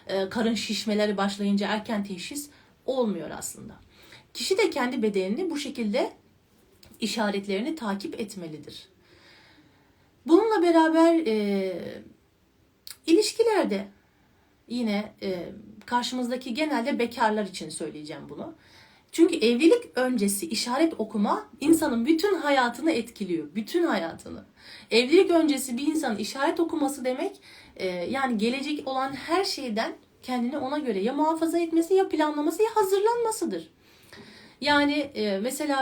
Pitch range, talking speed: 210-315 Hz, 105 wpm